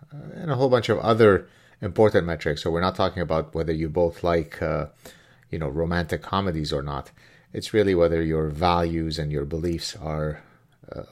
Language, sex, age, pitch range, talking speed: English, male, 30-49, 80-95 Hz, 185 wpm